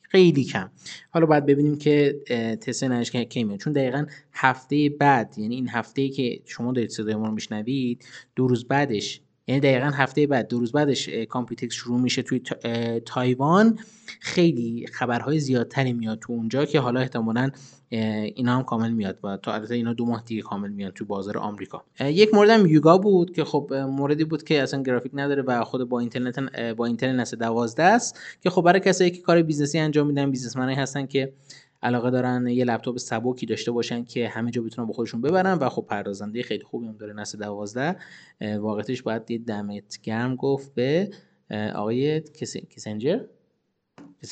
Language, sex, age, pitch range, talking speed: Persian, male, 20-39, 115-140 Hz, 175 wpm